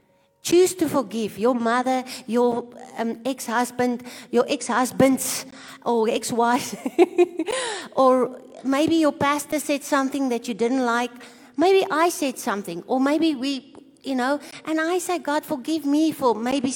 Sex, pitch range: female, 225-280 Hz